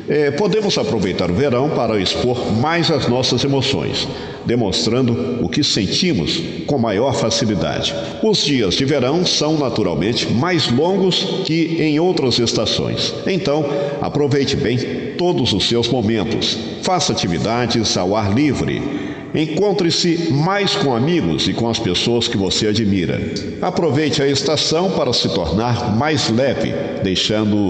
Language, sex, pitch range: Portuguese, male, 110-155 Hz